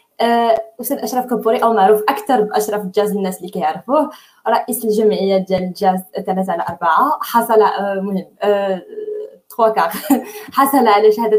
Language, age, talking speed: Arabic, 20-39, 115 wpm